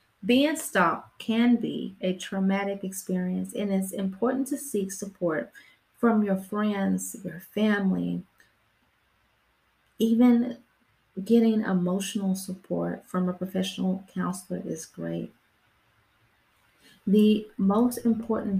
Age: 30-49